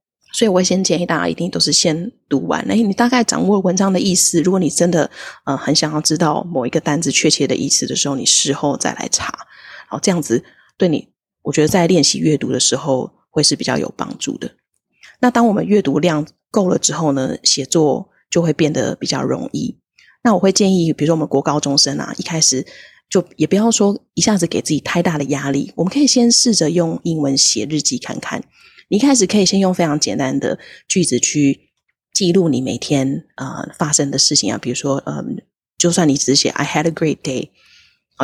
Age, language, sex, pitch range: 20-39, Chinese, female, 150-190 Hz